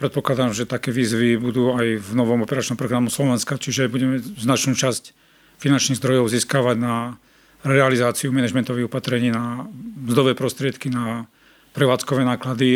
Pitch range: 120-135 Hz